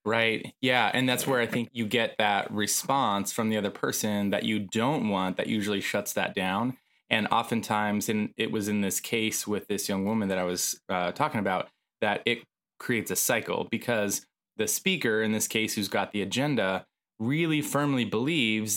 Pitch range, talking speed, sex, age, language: 105-120 Hz, 190 wpm, male, 20-39, English